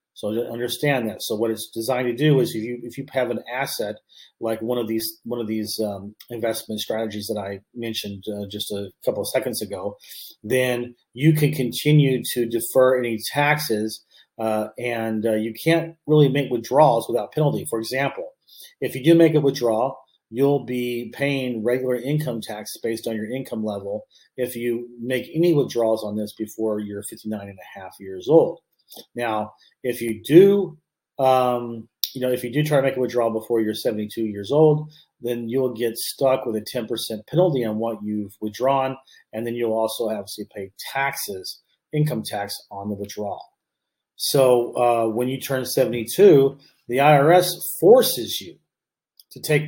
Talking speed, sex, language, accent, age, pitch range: 175 wpm, male, English, American, 40-59, 110-135 Hz